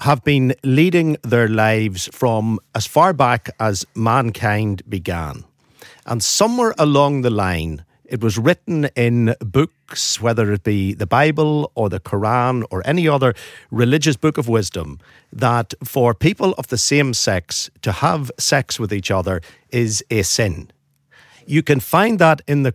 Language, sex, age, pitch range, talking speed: English, male, 50-69, 110-150 Hz, 155 wpm